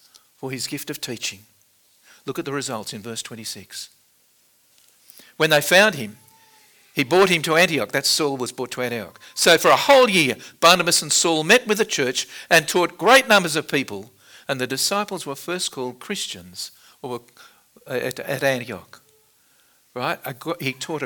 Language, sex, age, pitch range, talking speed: English, male, 60-79, 130-180 Hz, 160 wpm